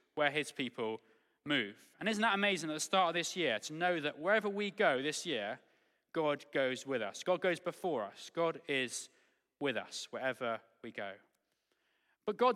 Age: 20-39